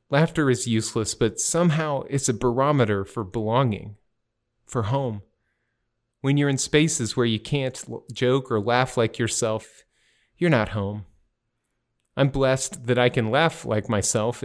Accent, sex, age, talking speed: American, male, 30-49, 145 wpm